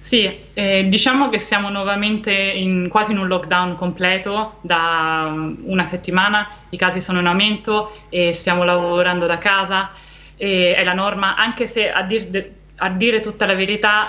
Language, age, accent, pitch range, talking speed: Italian, 20-39, native, 180-205 Hz, 165 wpm